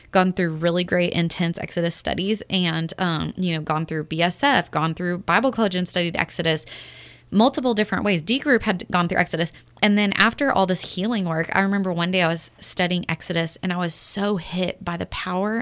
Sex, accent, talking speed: female, American, 205 wpm